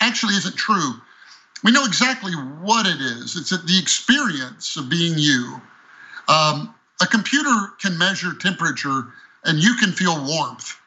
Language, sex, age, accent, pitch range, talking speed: English, male, 50-69, American, 160-205 Hz, 145 wpm